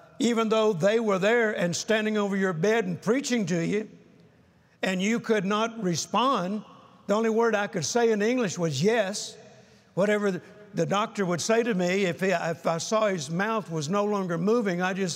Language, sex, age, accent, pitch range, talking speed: English, male, 60-79, American, 190-230 Hz, 185 wpm